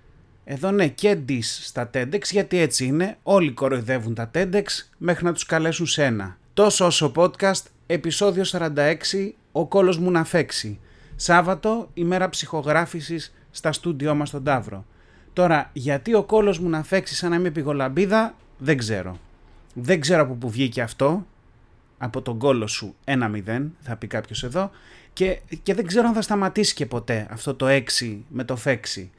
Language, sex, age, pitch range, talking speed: Greek, male, 30-49, 125-185 Hz, 160 wpm